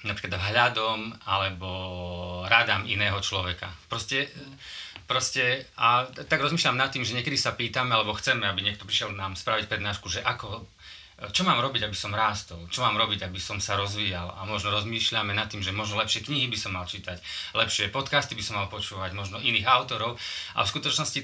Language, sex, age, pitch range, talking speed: Slovak, male, 30-49, 105-135 Hz, 185 wpm